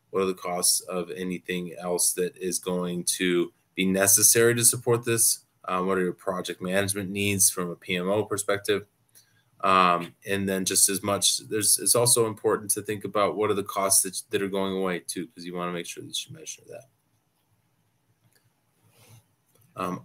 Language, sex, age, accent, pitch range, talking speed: English, male, 20-39, American, 95-115 Hz, 185 wpm